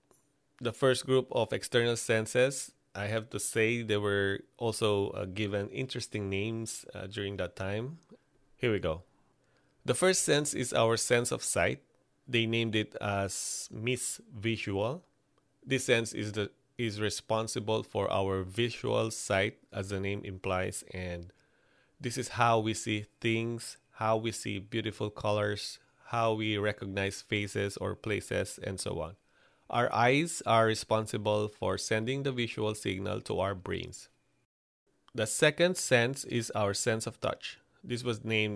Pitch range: 105-125 Hz